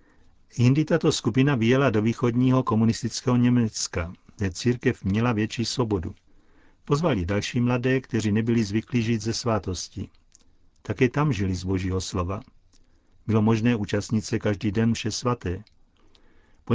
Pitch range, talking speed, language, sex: 105-125 Hz, 135 wpm, Czech, male